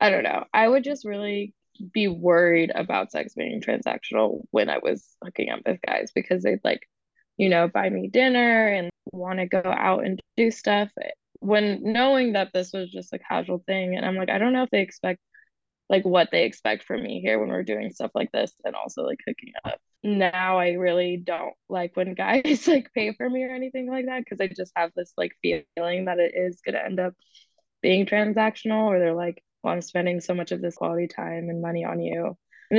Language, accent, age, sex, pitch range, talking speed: English, American, 10-29, female, 175-220 Hz, 220 wpm